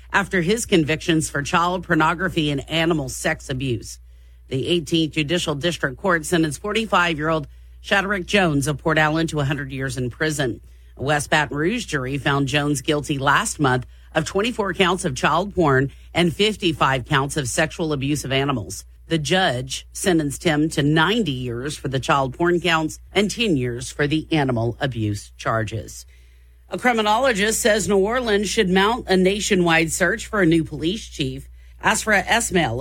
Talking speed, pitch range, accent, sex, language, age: 165 wpm, 140-180 Hz, American, female, English, 40-59